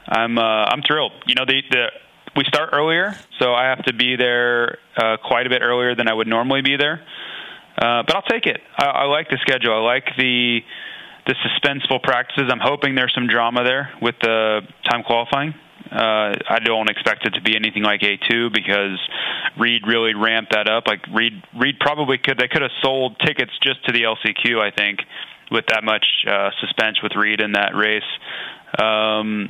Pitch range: 110-125 Hz